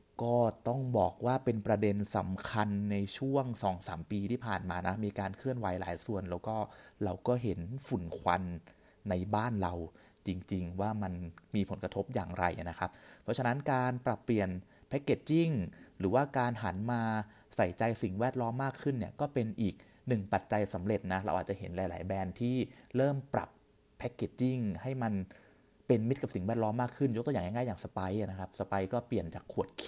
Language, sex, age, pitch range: Thai, male, 30-49, 95-125 Hz